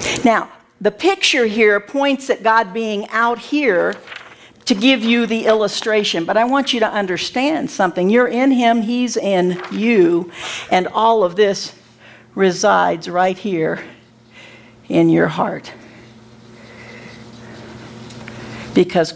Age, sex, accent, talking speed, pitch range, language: 60-79, female, American, 120 wpm, 170-235 Hz, English